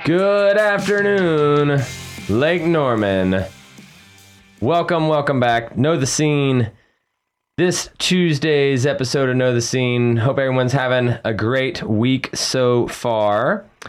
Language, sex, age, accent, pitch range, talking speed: English, male, 30-49, American, 100-135 Hz, 110 wpm